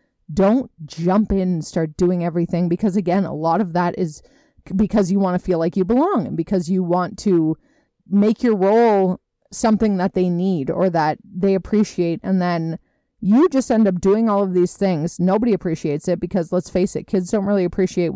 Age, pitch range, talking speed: 30-49, 170-205 Hz, 200 wpm